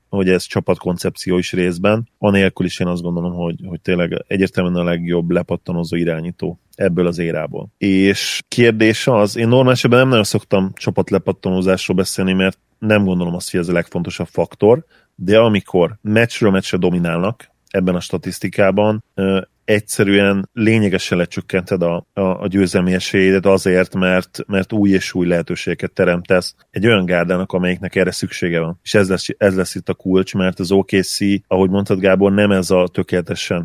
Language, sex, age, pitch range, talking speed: Hungarian, male, 30-49, 90-100 Hz, 160 wpm